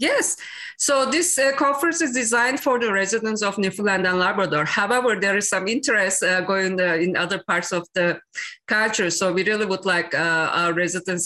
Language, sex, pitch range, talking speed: English, female, 170-230 Hz, 195 wpm